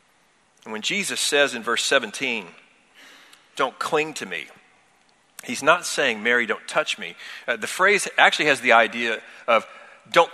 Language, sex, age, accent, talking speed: English, male, 40-59, American, 155 wpm